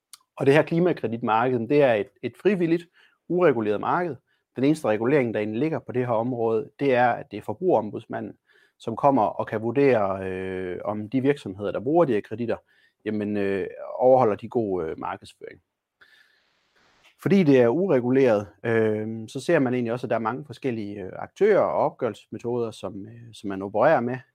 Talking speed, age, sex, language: 175 wpm, 30-49, male, Danish